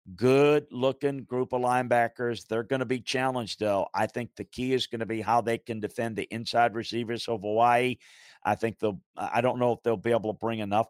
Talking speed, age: 225 wpm, 50-69